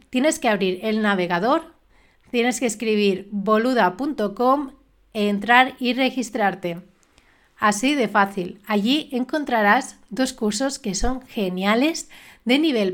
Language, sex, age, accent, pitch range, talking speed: Spanish, female, 30-49, Spanish, 195-245 Hz, 110 wpm